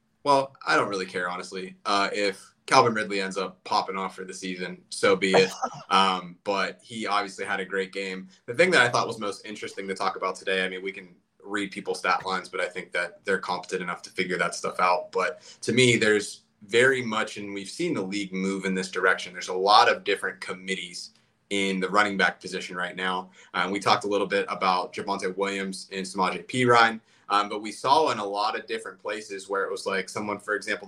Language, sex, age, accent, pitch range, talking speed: English, male, 30-49, American, 95-100 Hz, 225 wpm